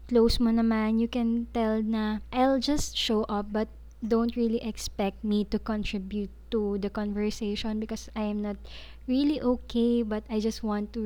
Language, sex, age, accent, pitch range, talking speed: Filipino, female, 20-39, native, 205-235 Hz, 175 wpm